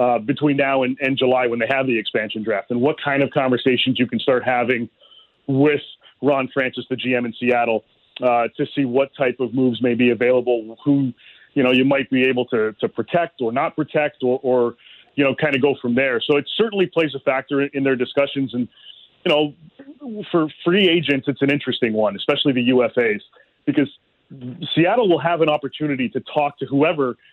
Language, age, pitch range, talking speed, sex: English, 30-49, 125-150 Hz, 205 wpm, male